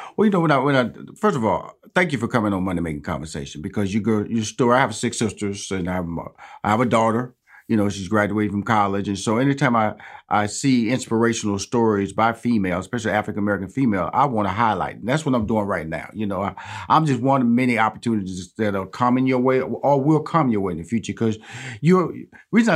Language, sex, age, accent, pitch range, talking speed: English, male, 40-59, American, 110-155 Hz, 240 wpm